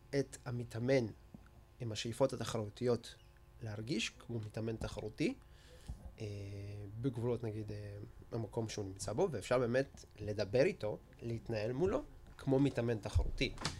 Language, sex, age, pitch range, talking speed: Hebrew, male, 20-39, 105-130 Hz, 105 wpm